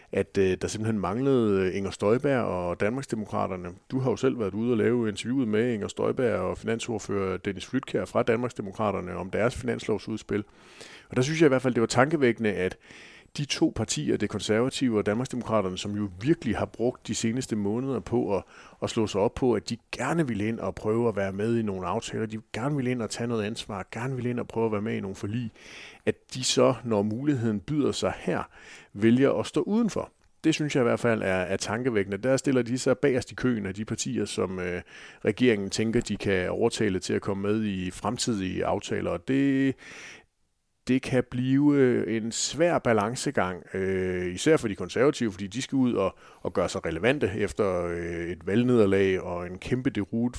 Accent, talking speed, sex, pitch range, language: native, 200 wpm, male, 100-125 Hz, Danish